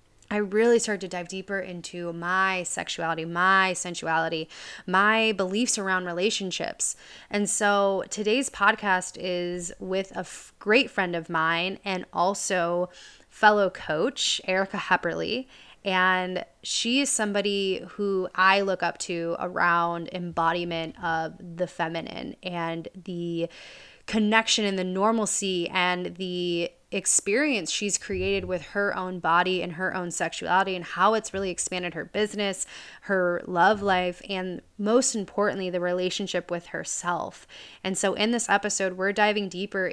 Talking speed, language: 135 wpm, English